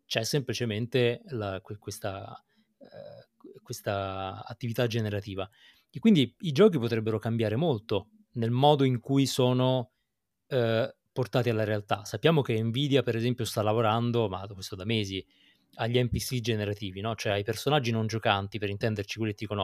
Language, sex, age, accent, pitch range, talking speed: Italian, male, 30-49, native, 105-140 Hz, 150 wpm